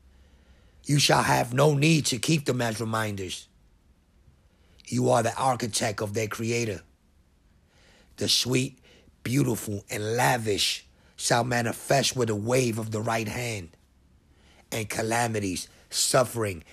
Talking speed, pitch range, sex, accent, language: 120 wpm, 80-120 Hz, male, American, English